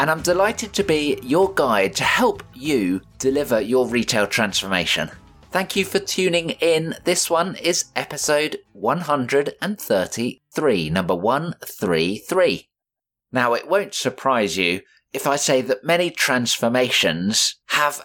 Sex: male